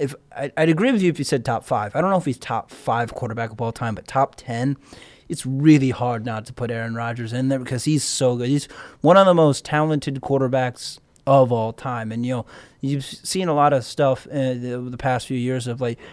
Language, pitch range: English, 120-140 Hz